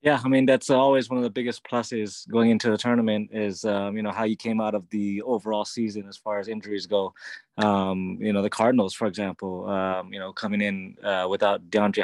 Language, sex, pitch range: English, male, 100-110 Hz